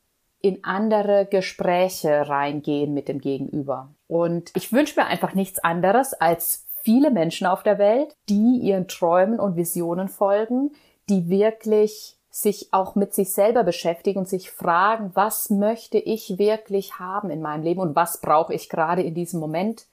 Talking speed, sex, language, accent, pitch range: 160 wpm, female, German, German, 165-210 Hz